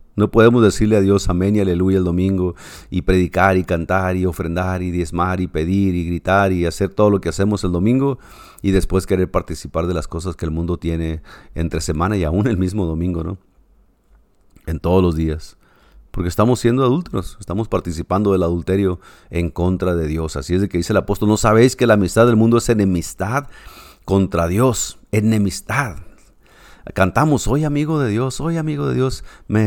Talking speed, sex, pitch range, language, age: 190 wpm, male, 90-115 Hz, Spanish, 40-59